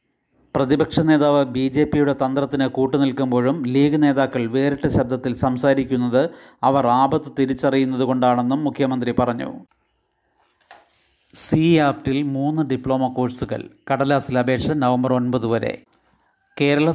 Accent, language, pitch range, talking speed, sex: native, Malayalam, 125-145 Hz, 100 wpm, male